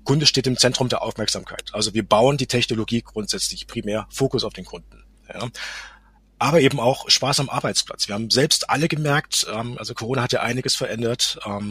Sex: male